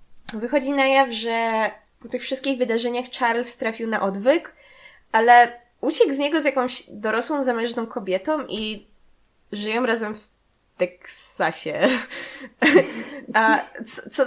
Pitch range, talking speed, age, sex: 215-260 Hz, 115 wpm, 20-39, female